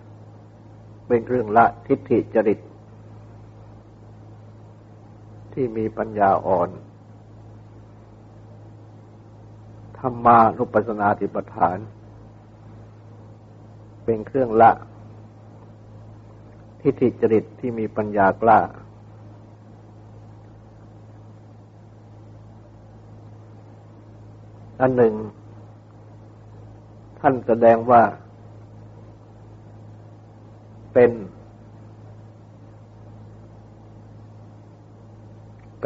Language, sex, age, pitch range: Thai, male, 60-79, 105-110 Hz